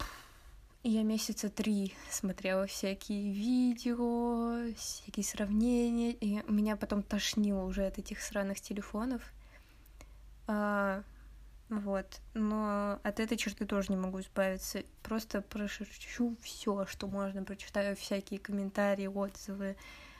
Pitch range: 200-225 Hz